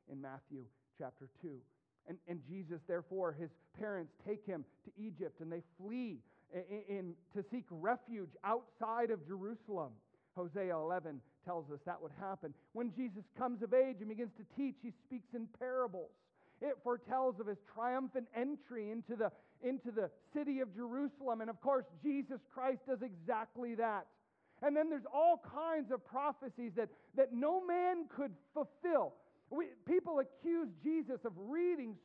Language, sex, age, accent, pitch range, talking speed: English, male, 40-59, American, 185-255 Hz, 155 wpm